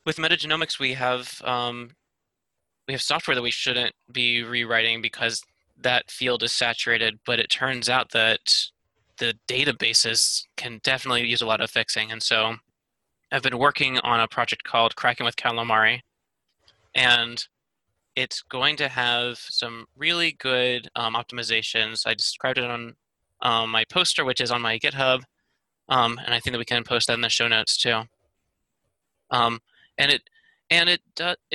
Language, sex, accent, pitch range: English, male, American, 115-135 Hz